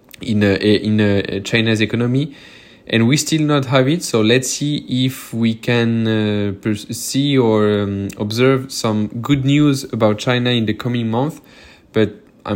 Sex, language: male, English